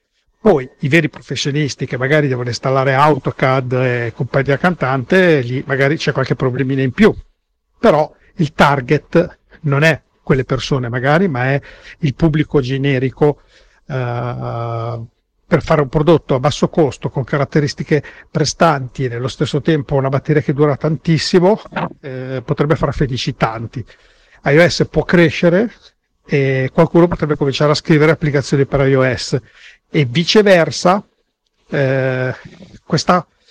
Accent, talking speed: native, 130 wpm